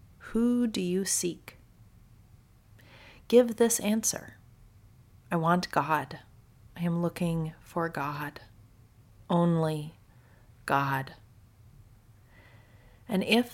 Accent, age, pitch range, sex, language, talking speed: American, 30-49, 115-185 Hz, female, English, 85 wpm